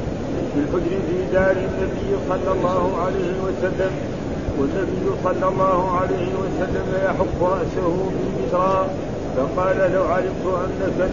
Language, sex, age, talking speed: Arabic, male, 50-69, 115 wpm